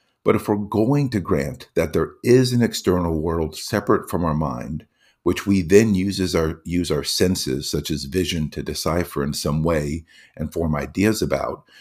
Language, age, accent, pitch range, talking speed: English, 50-69, American, 85-110 Hz, 190 wpm